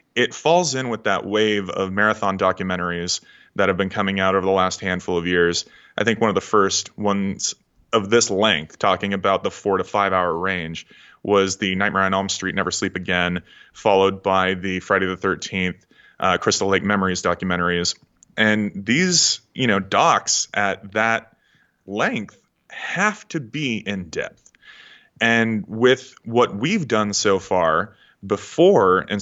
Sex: male